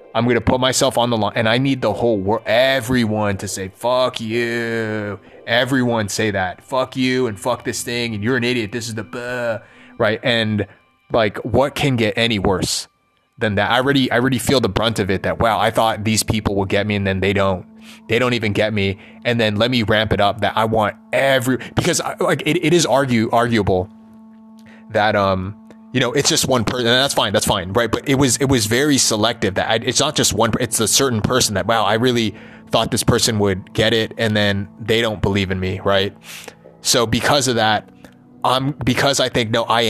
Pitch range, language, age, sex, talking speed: 105-130 Hz, English, 20-39, male, 225 wpm